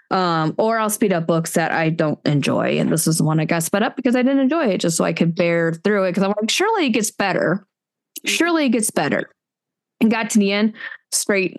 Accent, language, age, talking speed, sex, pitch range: American, English, 20-39, 250 wpm, female, 175-245 Hz